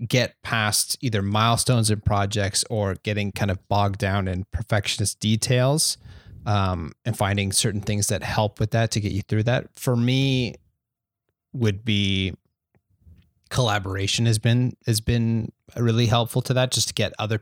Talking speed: 160 wpm